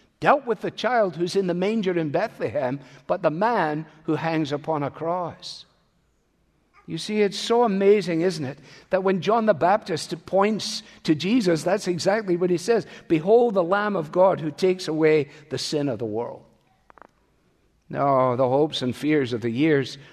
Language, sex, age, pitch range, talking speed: English, male, 60-79, 115-170 Hz, 175 wpm